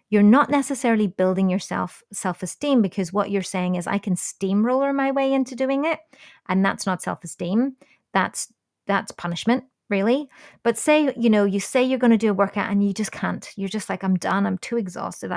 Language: English